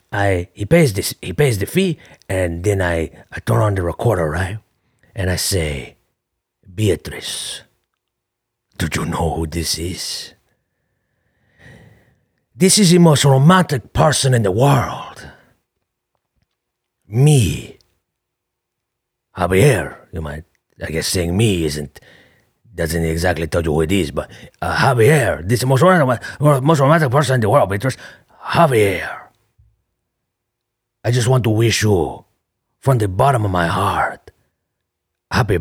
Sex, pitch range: male, 85-120 Hz